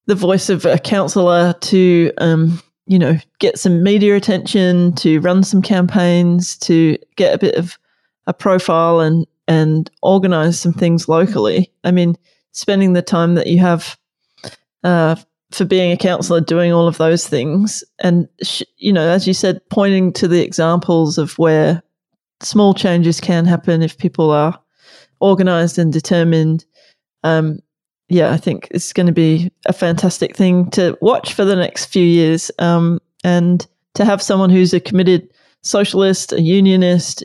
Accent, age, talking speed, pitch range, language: Australian, 20-39, 160 wpm, 165-190 Hz, English